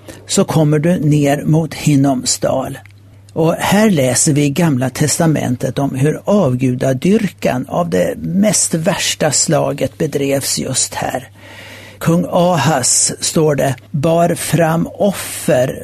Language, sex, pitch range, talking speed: Swedish, male, 130-170 Hz, 115 wpm